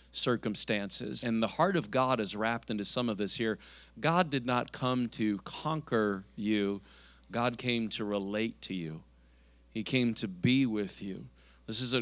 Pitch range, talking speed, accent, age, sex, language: 100-125 Hz, 175 wpm, American, 40-59, male, English